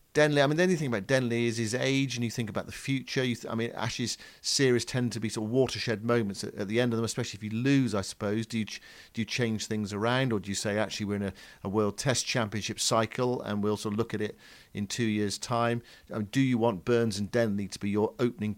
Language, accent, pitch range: English, British, 105-125 Hz